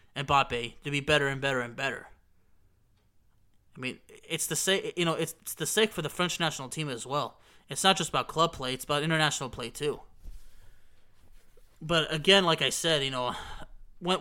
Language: English